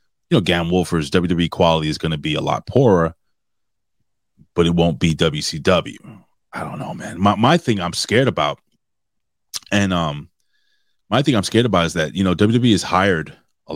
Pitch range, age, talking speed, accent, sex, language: 85-110 Hz, 30-49, 190 wpm, American, male, English